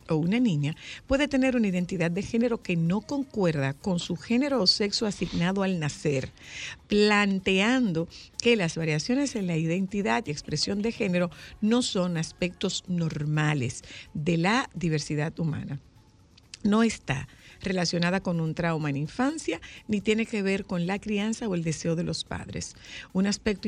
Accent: American